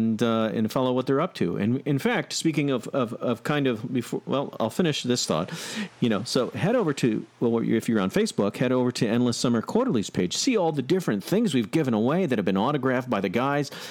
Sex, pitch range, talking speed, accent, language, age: male, 115-155 Hz, 235 wpm, American, English, 40-59